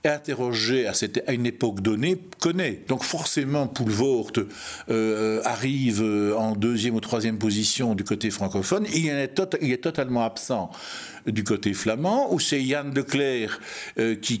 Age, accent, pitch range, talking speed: 60-79, French, 115-150 Hz, 155 wpm